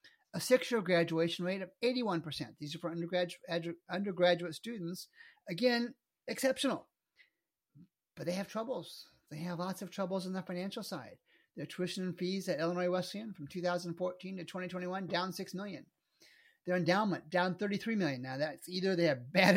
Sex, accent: male, American